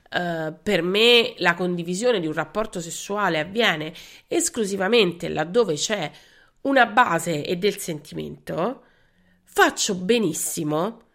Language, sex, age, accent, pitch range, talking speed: Italian, female, 30-49, native, 165-250 Hz, 100 wpm